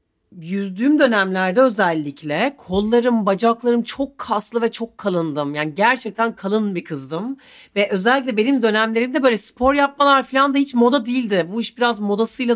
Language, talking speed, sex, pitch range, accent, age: Turkish, 150 wpm, female, 185-250 Hz, native, 40-59